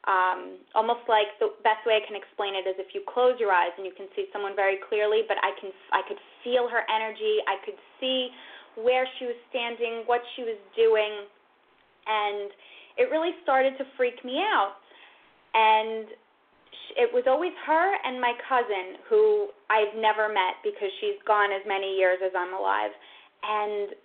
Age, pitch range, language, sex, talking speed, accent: 10-29, 210-310 Hz, English, female, 175 wpm, American